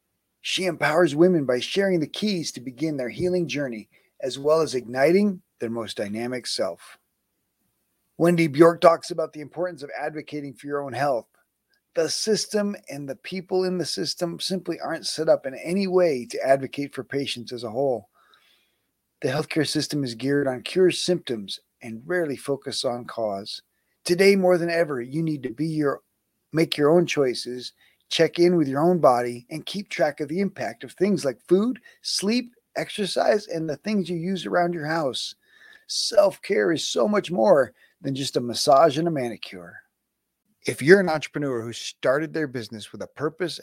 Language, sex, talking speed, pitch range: English, male, 175 wpm, 125-180 Hz